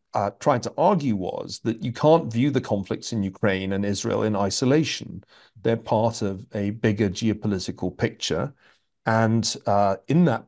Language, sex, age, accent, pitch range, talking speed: English, male, 40-59, British, 100-125 Hz, 160 wpm